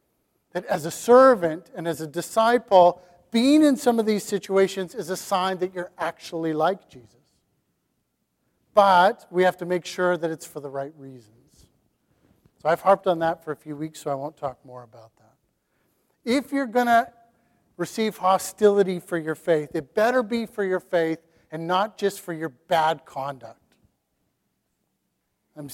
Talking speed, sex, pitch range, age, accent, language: 170 wpm, male, 160-200 Hz, 40-59, American, English